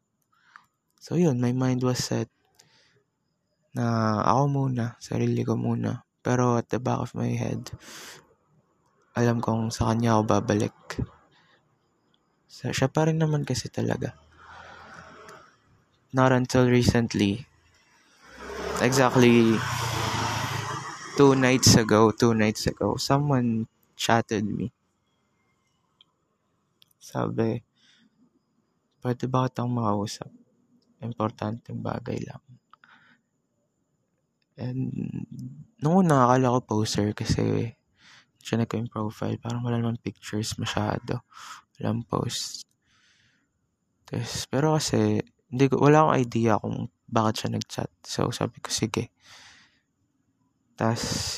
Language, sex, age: Filipino, male, 20-39